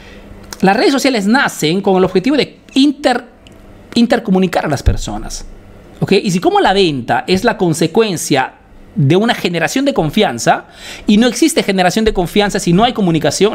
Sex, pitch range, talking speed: male, 165-245 Hz, 165 wpm